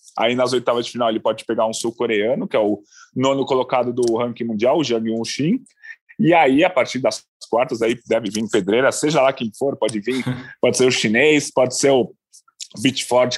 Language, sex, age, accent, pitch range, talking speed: Portuguese, male, 20-39, Brazilian, 115-145 Hz, 200 wpm